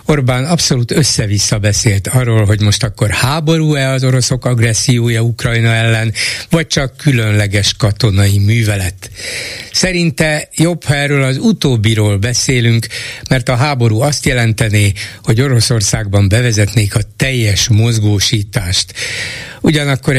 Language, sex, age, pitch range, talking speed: Hungarian, male, 60-79, 110-135 Hz, 115 wpm